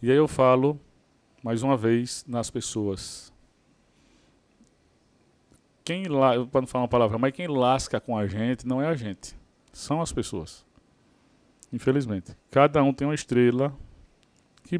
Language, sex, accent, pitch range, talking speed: Portuguese, male, Brazilian, 115-160 Hz, 140 wpm